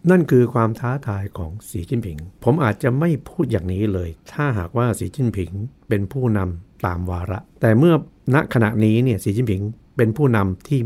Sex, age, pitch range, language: male, 60-79, 100-125 Hz, Thai